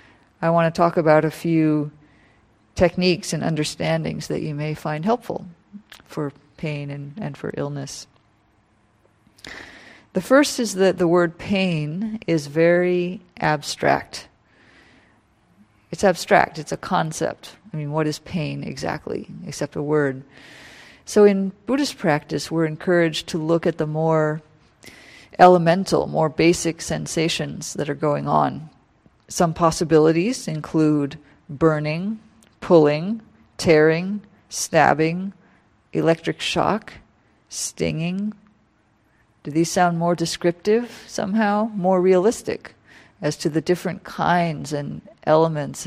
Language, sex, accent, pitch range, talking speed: English, female, American, 150-185 Hz, 115 wpm